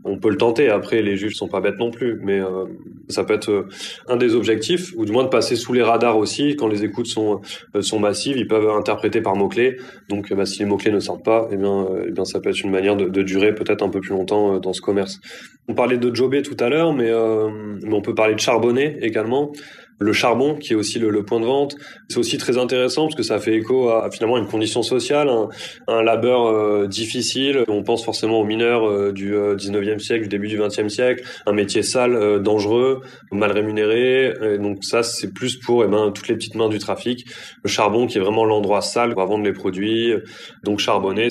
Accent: French